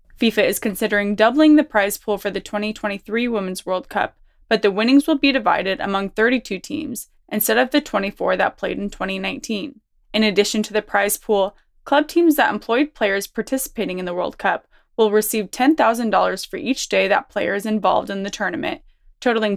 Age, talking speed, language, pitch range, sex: 20-39, 185 wpm, English, 205-245 Hz, female